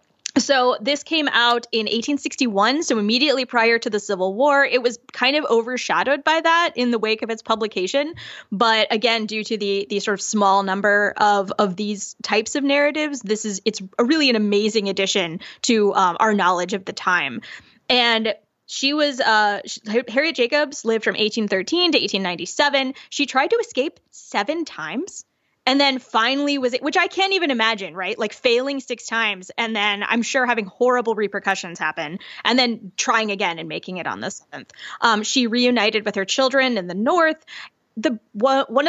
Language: English